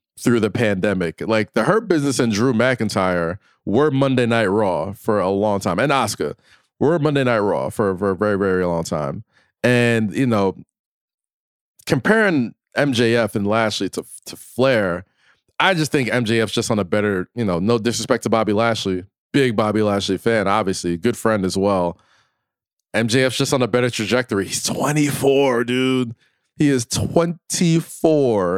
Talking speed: 160 wpm